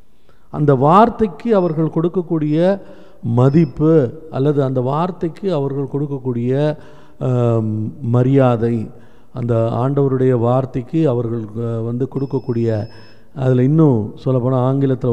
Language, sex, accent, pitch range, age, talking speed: Tamil, male, native, 125-180 Hz, 50-69, 85 wpm